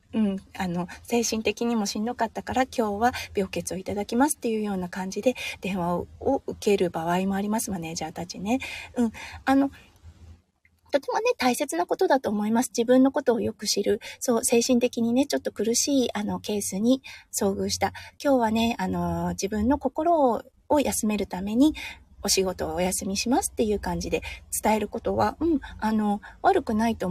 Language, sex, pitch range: Japanese, female, 185-260 Hz